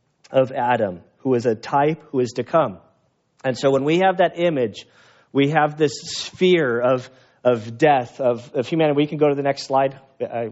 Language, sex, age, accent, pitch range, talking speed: English, male, 40-59, American, 130-165 Hz, 200 wpm